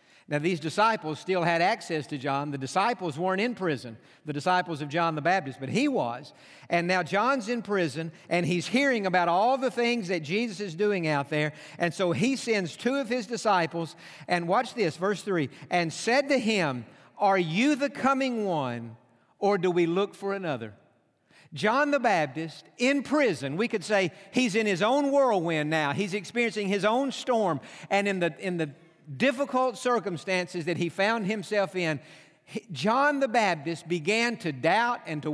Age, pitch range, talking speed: 50-69, 170-225 Hz, 180 wpm